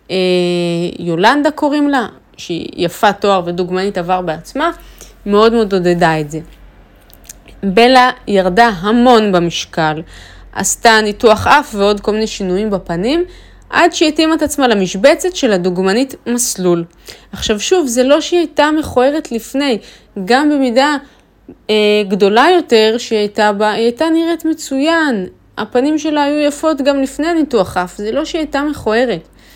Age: 30-49